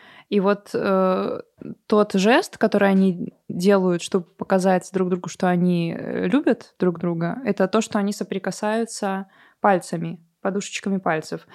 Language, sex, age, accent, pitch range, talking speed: Russian, female, 20-39, native, 180-210 Hz, 130 wpm